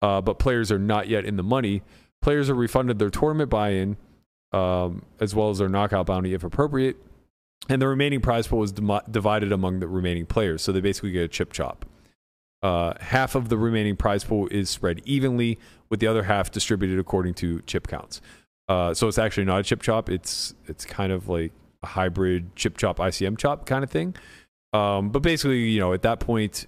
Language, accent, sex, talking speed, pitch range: English, American, male, 205 wpm, 95-115 Hz